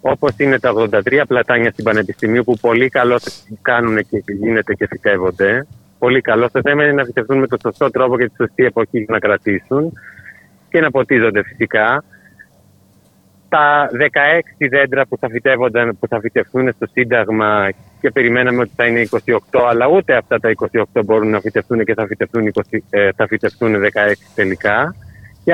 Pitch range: 110-150 Hz